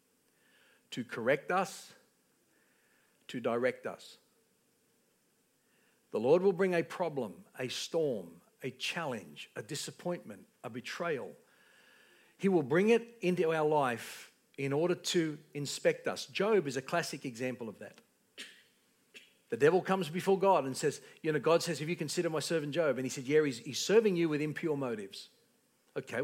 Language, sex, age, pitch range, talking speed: English, male, 60-79, 160-210 Hz, 155 wpm